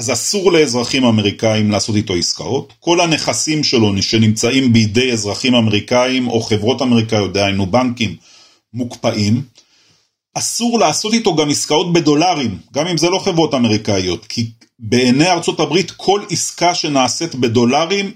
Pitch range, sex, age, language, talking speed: 110-155 Hz, male, 40-59, Hebrew, 130 wpm